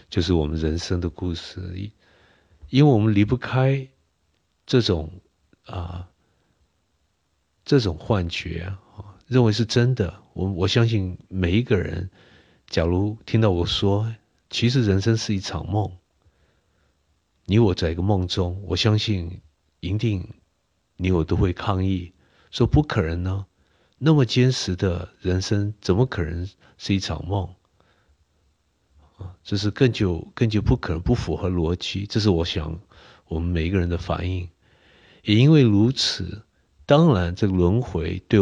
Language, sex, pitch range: Chinese, male, 85-105 Hz